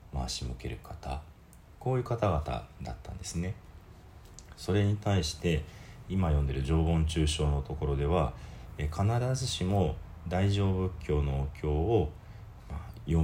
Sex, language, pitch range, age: male, Japanese, 75-95 Hz, 40-59